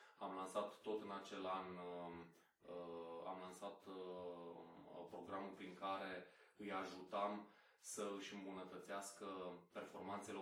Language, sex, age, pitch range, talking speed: Romanian, male, 20-39, 90-100 Hz, 100 wpm